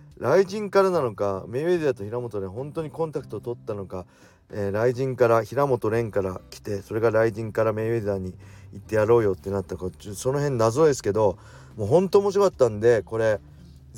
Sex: male